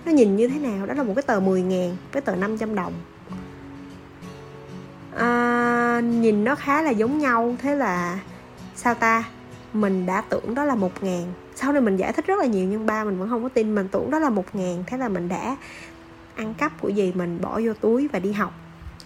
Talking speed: 210 wpm